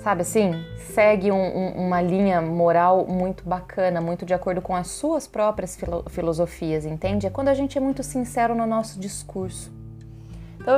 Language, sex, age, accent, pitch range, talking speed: Portuguese, female, 20-39, Brazilian, 185-255 Hz, 155 wpm